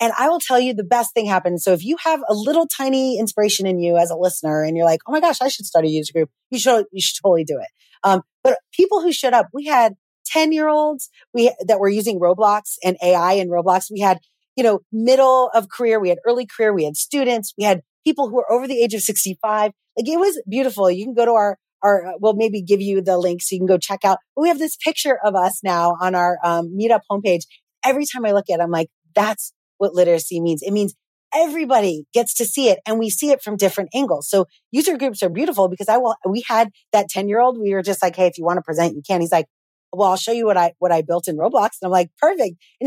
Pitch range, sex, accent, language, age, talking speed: 185-255 Hz, female, American, English, 30-49, 265 wpm